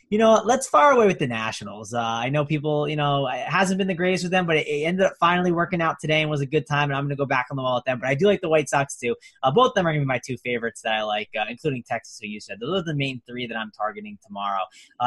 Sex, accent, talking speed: male, American, 325 wpm